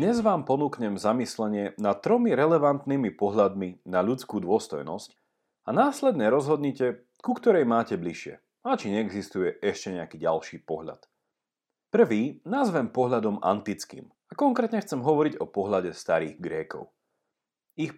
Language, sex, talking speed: Slovak, male, 125 wpm